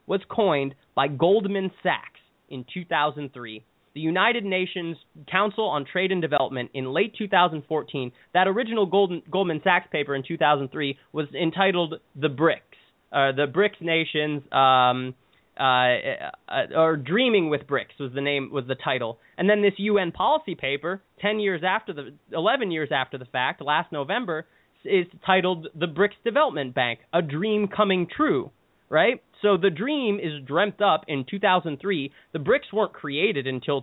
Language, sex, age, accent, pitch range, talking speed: English, male, 20-39, American, 140-185 Hz, 160 wpm